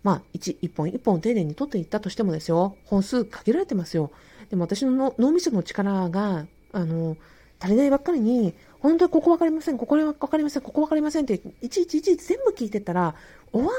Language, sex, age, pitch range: Japanese, female, 50-69, 165-255 Hz